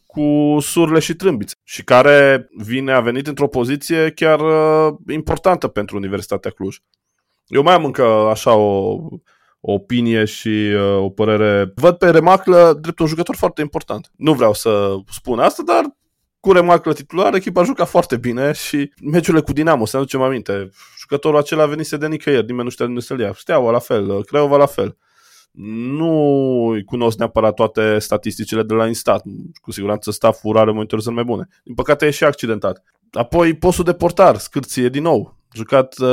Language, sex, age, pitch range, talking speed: Romanian, male, 20-39, 110-150 Hz, 170 wpm